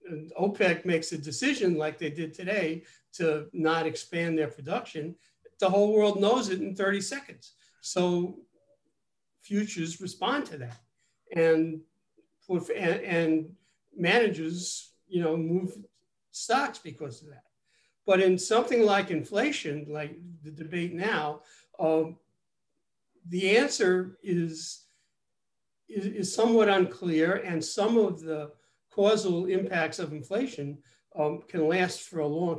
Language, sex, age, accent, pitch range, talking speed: English, male, 60-79, American, 150-185 Hz, 130 wpm